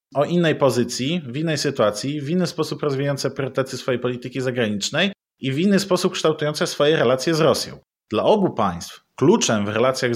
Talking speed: 170 wpm